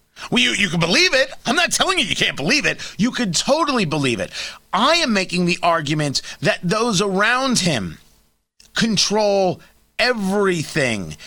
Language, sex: English, male